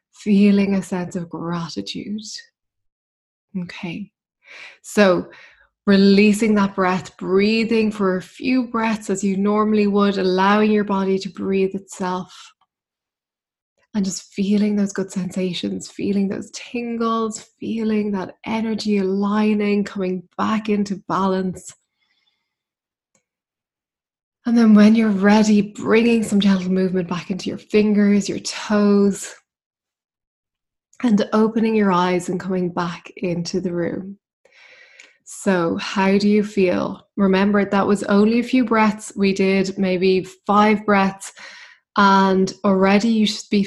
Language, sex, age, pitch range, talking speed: English, female, 20-39, 190-215 Hz, 120 wpm